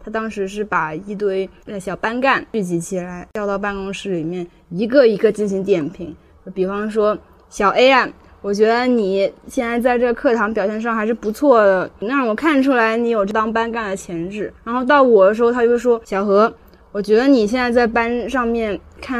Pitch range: 190-235 Hz